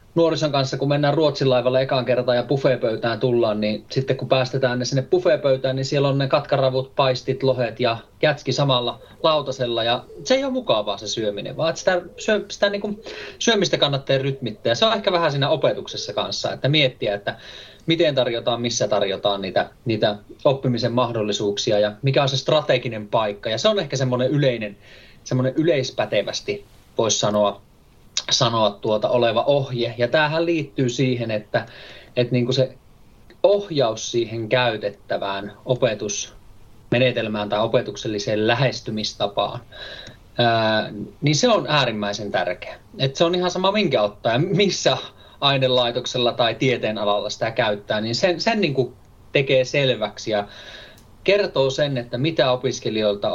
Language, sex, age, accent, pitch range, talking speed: Finnish, male, 30-49, native, 110-140 Hz, 140 wpm